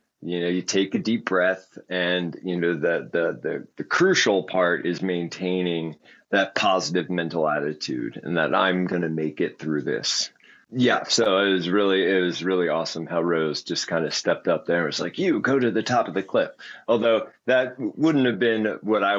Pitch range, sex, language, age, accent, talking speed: 85-95 Hz, male, English, 30-49, American, 205 wpm